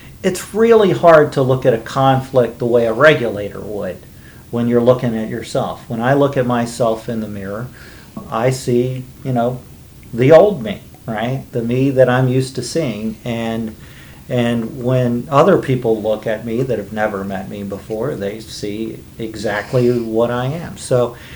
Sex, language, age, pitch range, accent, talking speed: male, English, 50-69, 110-130 Hz, American, 175 wpm